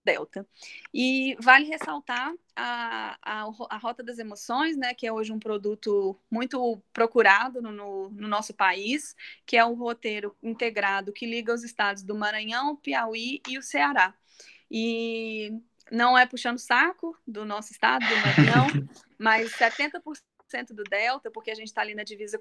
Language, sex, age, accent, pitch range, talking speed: Portuguese, female, 20-39, Brazilian, 215-260 Hz, 160 wpm